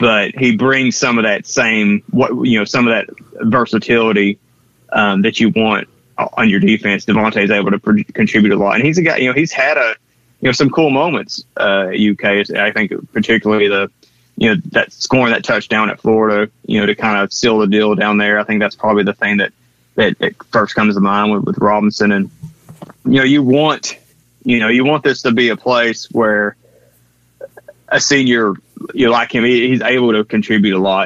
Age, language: 20-39, English